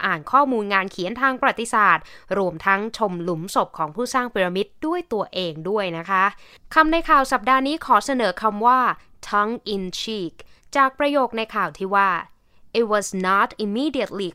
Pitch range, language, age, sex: 185-255 Hz, Thai, 20-39, female